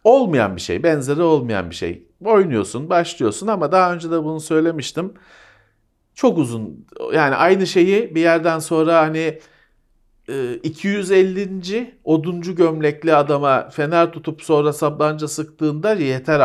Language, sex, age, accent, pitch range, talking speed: Turkish, male, 40-59, native, 115-160 Hz, 125 wpm